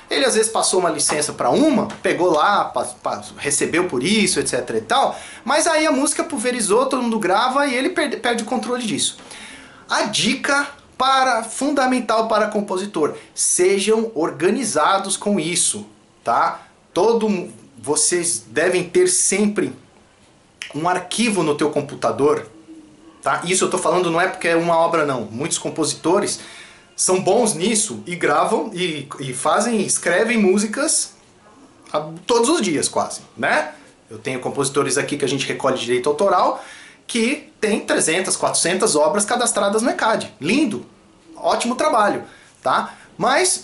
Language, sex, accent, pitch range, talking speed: Portuguese, male, Brazilian, 165-245 Hz, 150 wpm